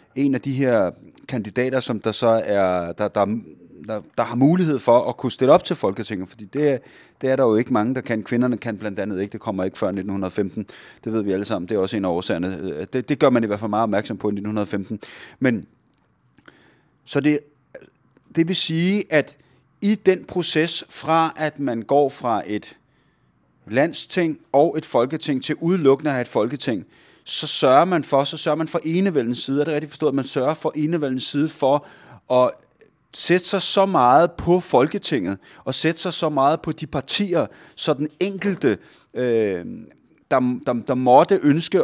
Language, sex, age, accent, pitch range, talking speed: Danish, male, 30-49, native, 115-155 Hz, 190 wpm